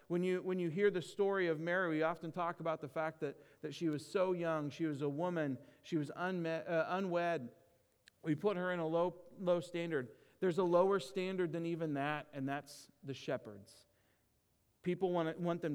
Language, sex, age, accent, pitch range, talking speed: English, male, 40-59, American, 145-175 Hz, 205 wpm